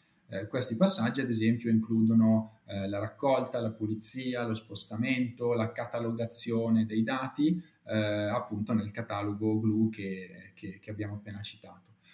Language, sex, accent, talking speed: Italian, male, native, 135 wpm